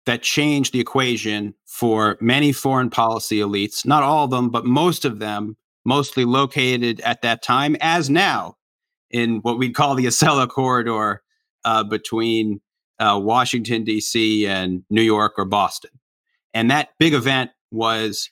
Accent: American